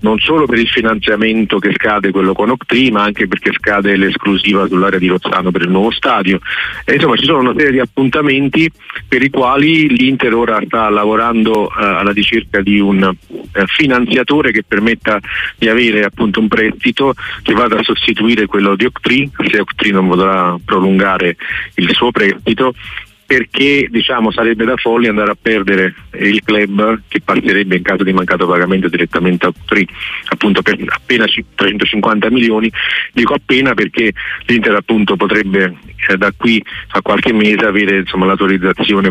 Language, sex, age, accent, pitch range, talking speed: Italian, male, 40-59, native, 95-115 Hz, 160 wpm